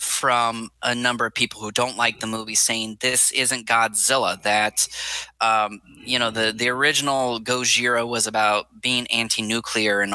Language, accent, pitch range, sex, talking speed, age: English, American, 110-135 Hz, male, 160 wpm, 20-39